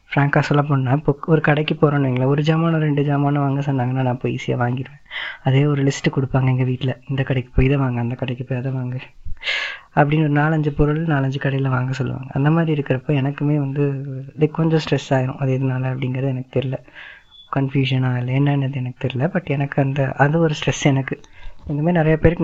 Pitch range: 130-145 Hz